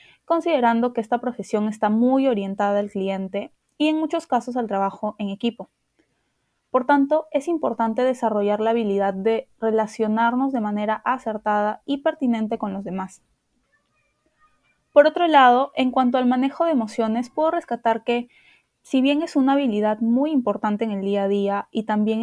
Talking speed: 160 wpm